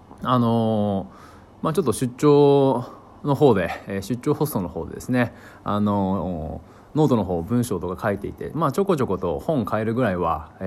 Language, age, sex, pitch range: Japanese, 20-39, male, 100-155 Hz